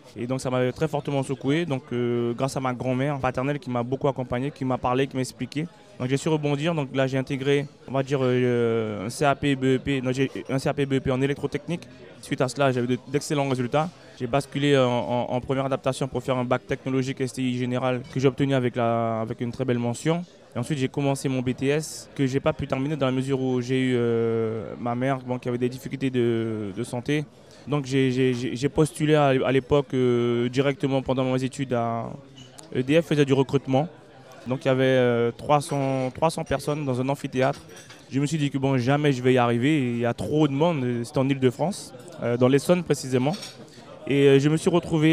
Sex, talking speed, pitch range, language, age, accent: male, 210 wpm, 125-145 Hz, French, 20-39, French